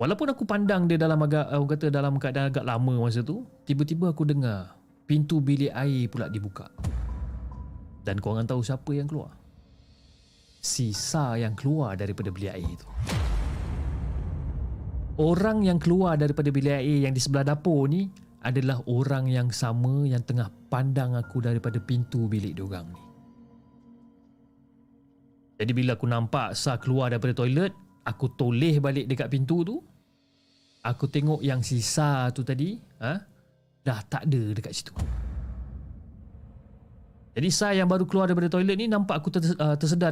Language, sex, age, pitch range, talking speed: Malay, male, 30-49, 115-150 Hz, 140 wpm